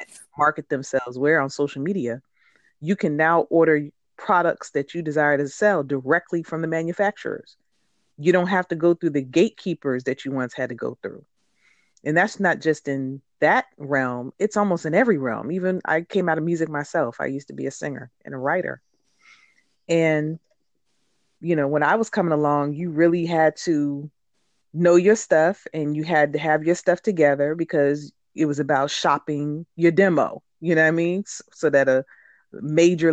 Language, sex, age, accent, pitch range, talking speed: English, female, 40-59, American, 150-200 Hz, 185 wpm